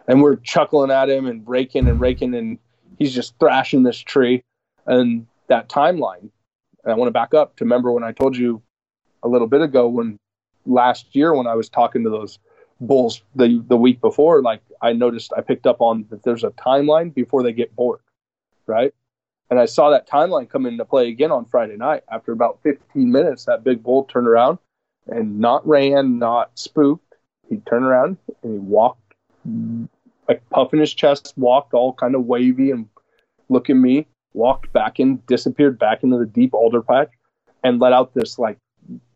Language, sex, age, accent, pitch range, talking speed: English, male, 20-39, American, 120-155 Hz, 190 wpm